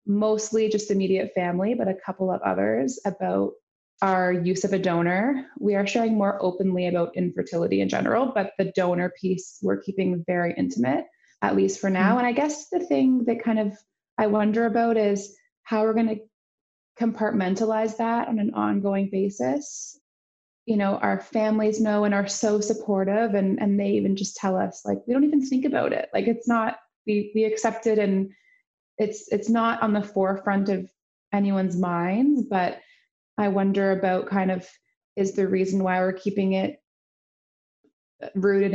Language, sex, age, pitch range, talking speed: English, female, 20-39, 190-225 Hz, 175 wpm